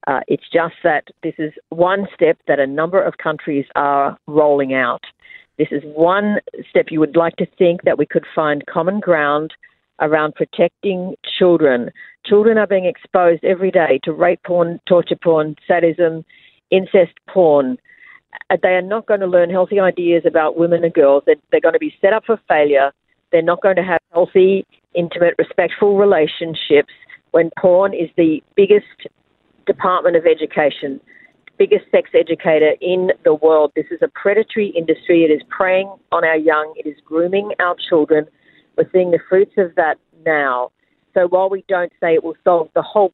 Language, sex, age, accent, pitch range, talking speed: English, female, 50-69, Australian, 155-195 Hz, 175 wpm